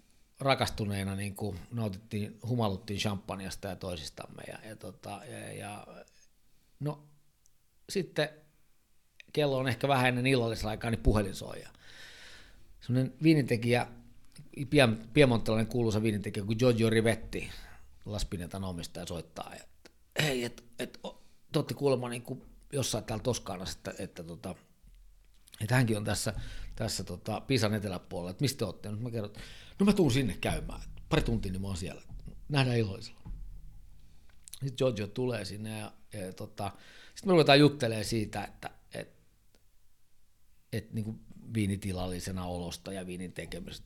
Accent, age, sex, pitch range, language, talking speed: native, 50-69, male, 95-130 Hz, Finnish, 130 wpm